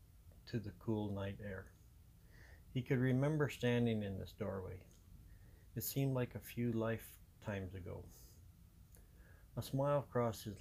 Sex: male